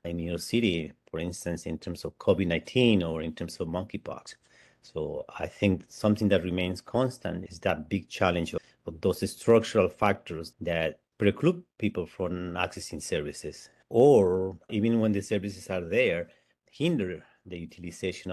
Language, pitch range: English, 85-110 Hz